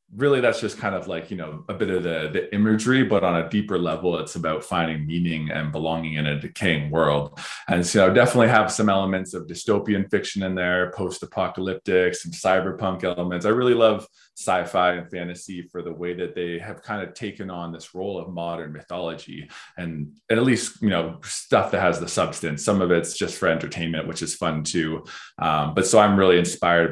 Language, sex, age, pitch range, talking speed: English, male, 20-39, 80-95 Hz, 205 wpm